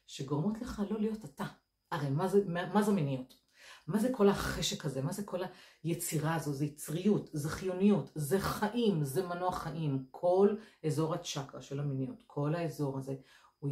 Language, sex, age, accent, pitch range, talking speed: Hebrew, female, 50-69, native, 145-195 Hz, 170 wpm